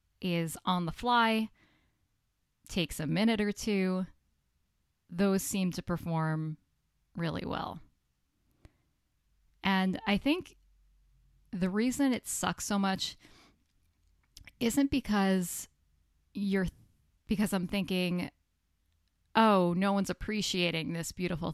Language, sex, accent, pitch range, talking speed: English, female, American, 165-205 Hz, 100 wpm